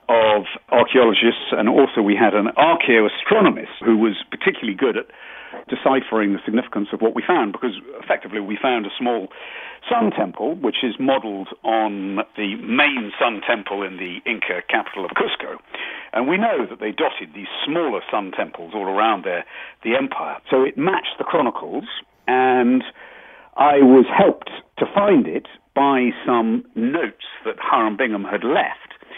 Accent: British